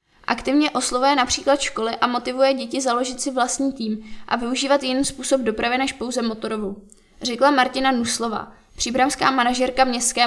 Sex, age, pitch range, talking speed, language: female, 20-39, 230-265 Hz, 145 wpm, Czech